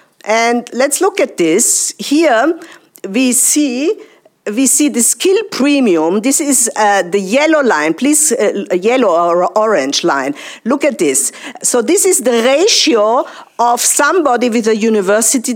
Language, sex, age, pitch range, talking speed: English, female, 50-69, 215-300 Hz, 145 wpm